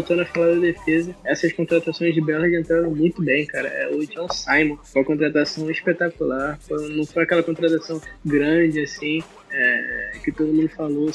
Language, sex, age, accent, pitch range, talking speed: Portuguese, male, 20-39, Brazilian, 155-170 Hz, 185 wpm